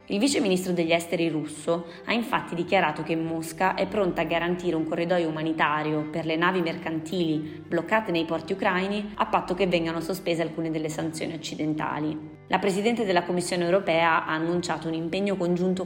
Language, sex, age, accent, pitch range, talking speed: Italian, female, 20-39, native, 160-185 Hz, 170 wpm